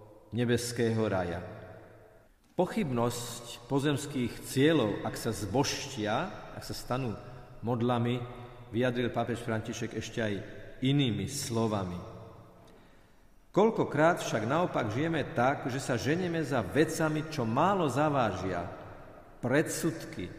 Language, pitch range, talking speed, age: Slovak, 110-150 Hz, 95 wpm, 50-69